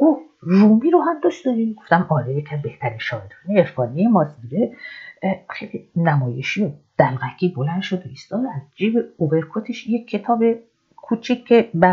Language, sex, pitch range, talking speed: Persian, female, 150-215 Hz, 140 wpm